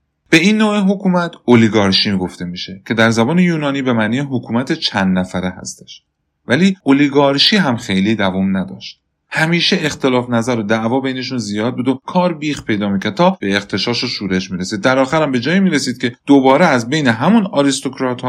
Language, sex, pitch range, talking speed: Persian, male, 100-150 Hz, 185 wpm